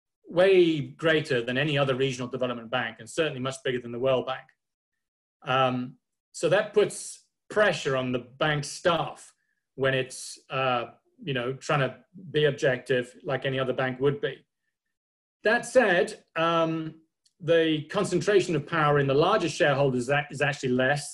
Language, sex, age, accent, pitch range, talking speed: English, male, 40-59, British, 130-165 Hz, 155 wpm